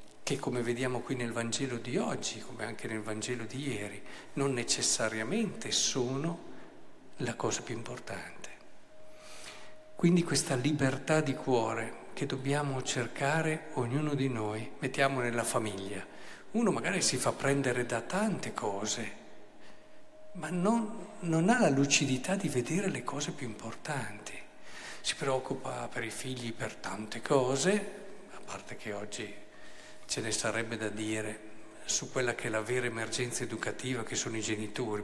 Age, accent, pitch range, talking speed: 50-69, native, 115-155 Hz, 145 wpm